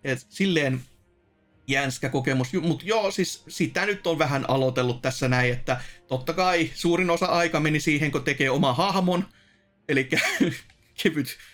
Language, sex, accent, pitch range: Finnish, male, native, 130-170 Hz